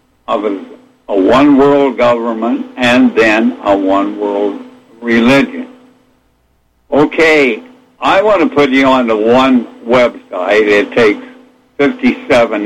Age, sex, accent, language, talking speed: 60-79, male, American, English, 110 wpm